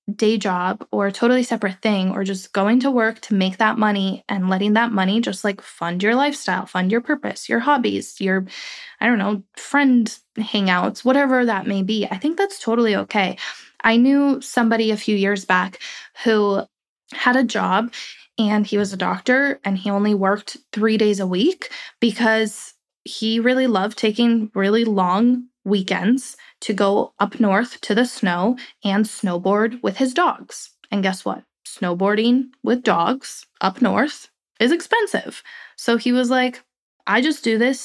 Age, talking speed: 20-39, 170 wpm